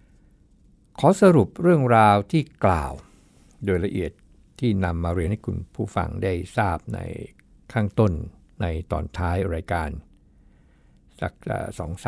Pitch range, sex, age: 85-110 Hz, male, 60-79